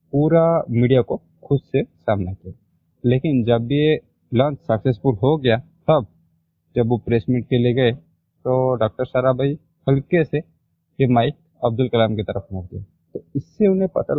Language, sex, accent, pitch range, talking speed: Hindi, male, native, 115-150 Hz, 170 wpm